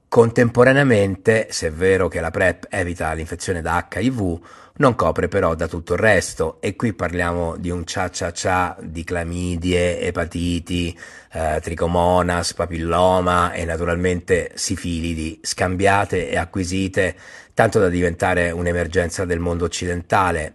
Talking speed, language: 130 wpm, Italian